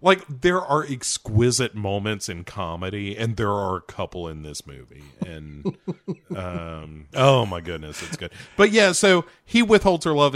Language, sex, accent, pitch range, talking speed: English, male, American, 85-125 Hz, 170 wpm